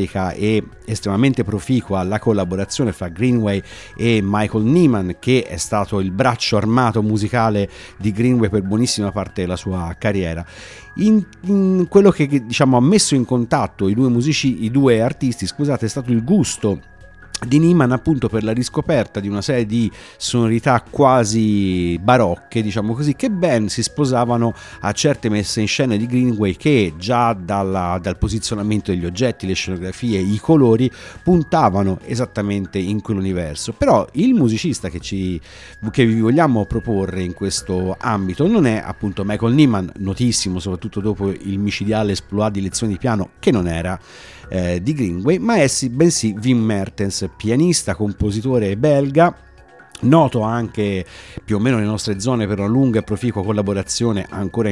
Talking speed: 155 wpm